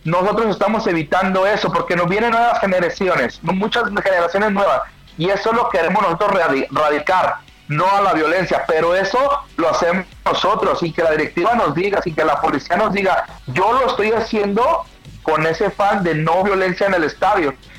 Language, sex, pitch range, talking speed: Spanish, male, 170-220 Hz, 170 wpm